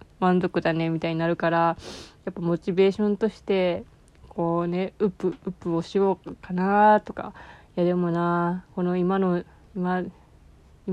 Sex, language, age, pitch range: female, Japanese, 20-39, 170-195 Hz